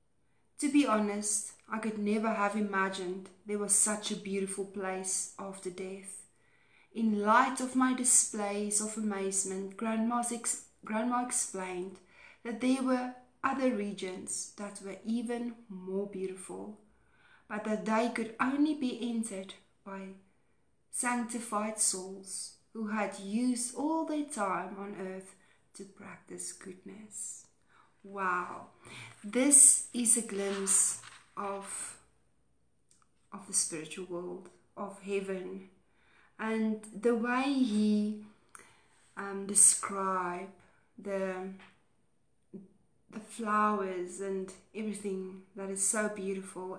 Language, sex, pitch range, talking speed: English, female, 190-220 Hz, 110 wpm